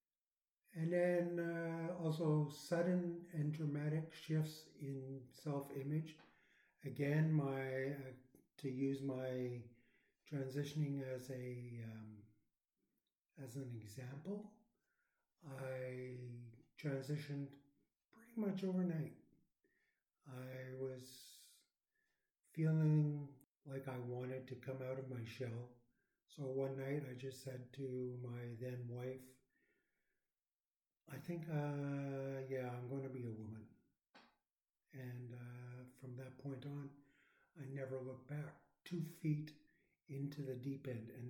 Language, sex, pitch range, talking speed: English, male, 130-150 Hz, 110 wpm